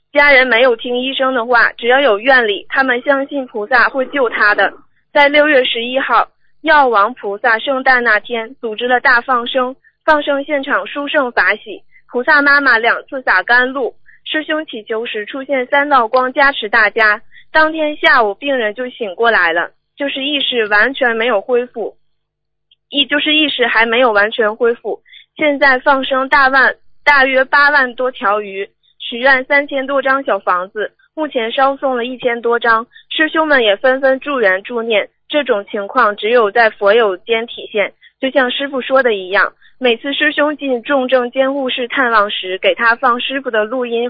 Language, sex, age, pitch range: Chinese, female, 20-39, 230-280 Hz